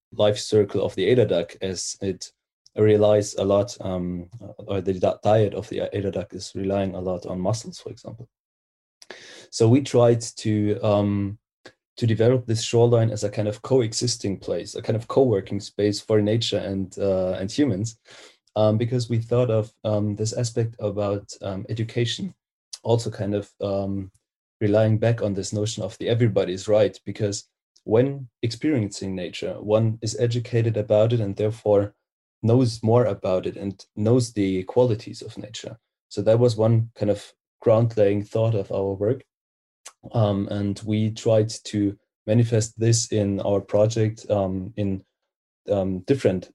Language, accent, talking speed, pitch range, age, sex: English, German, 160 wpm, 100-115 Hz, 30-49, male